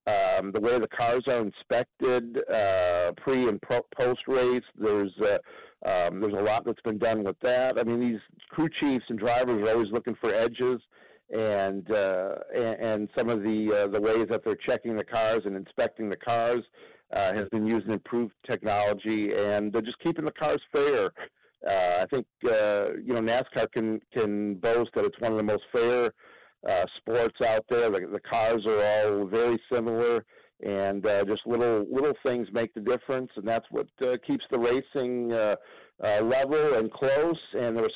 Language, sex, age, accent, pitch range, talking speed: English, male, 50-69, American, 105-125 Hz, 185 wpm